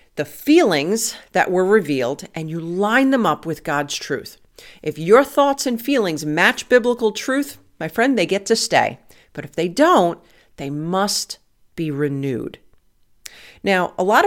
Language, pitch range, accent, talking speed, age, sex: English, 165-225 Hz, American, 160 wpm, 50-69, female